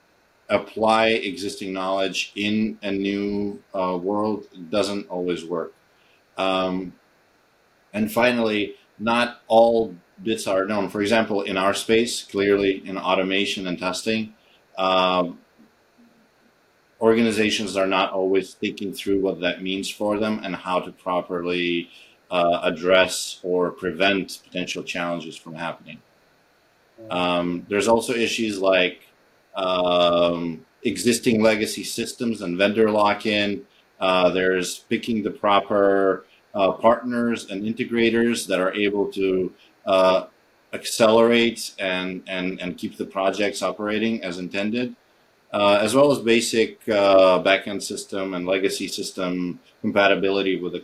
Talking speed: 120 wpm